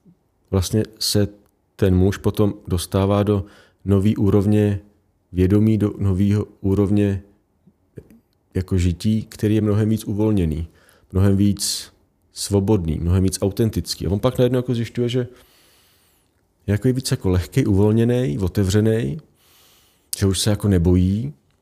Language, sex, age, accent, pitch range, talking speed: Czech, male, 40-59, native, 95-110 Hz, 125 wpm